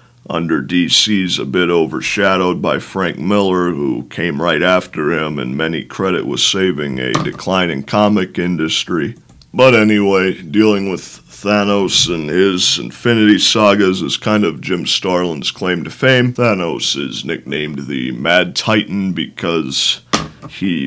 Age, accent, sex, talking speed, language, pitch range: 50-69, American, male, 135 wpm, English, 80-105 Hz